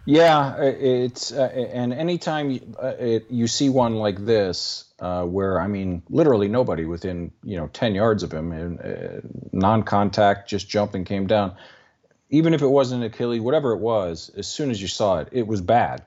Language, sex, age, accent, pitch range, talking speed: English, male, 40-59, American, 100-135 Hz, 185 wpm